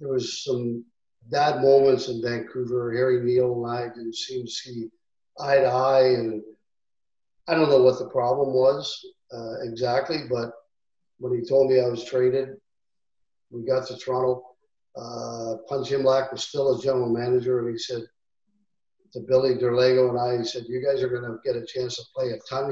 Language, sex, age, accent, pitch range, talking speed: English, male, 50-69, American, 120-135 Hz, 185 wpm